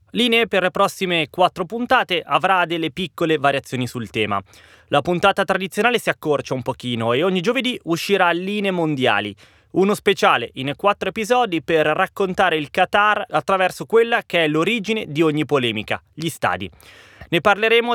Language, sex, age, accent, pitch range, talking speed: Italian, male, 20-39, native, 135-190 Hz, 155 wpm